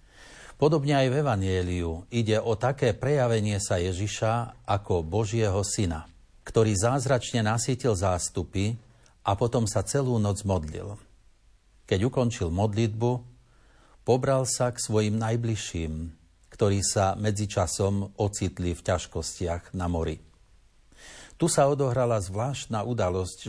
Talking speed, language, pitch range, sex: 110 wpm, Slovak, 95-120 Hz, male